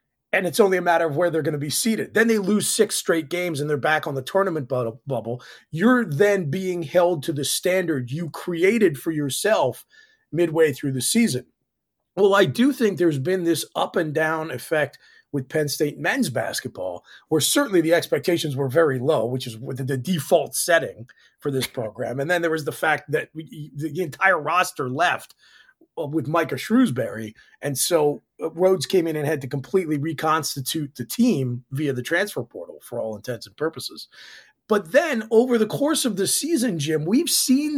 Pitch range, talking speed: 150-205 Hz, 185 wpm